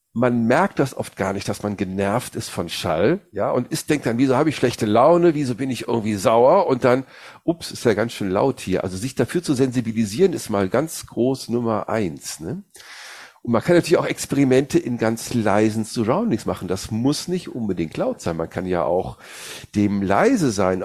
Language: German